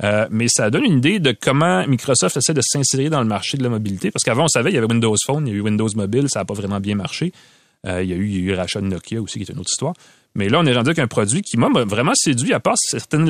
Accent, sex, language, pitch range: Canadian, male, French, 100-135 Hz